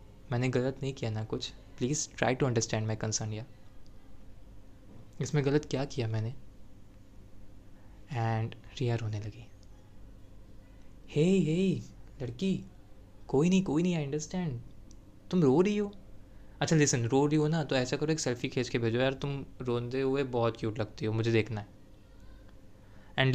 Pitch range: 105-130 Hz